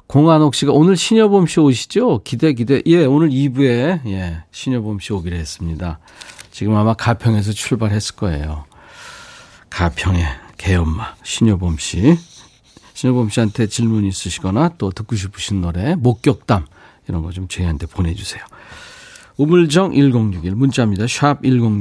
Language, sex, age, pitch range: Korean, male, 40-59, 95-145 Hz